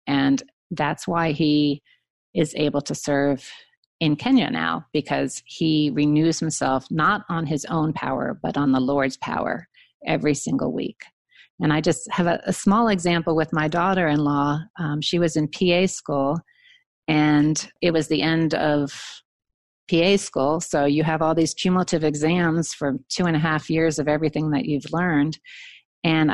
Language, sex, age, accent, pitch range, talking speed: English, female, 40-59, American, 150-185 Hz, 160 wpm